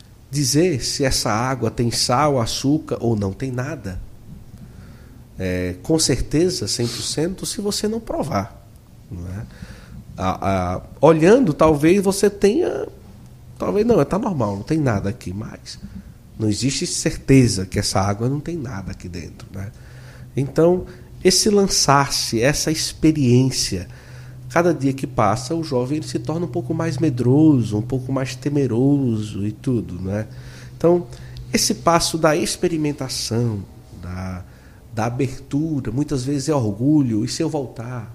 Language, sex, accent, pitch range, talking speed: Portuguese, male, Brazilian, 105-155 Hz, 130 wpm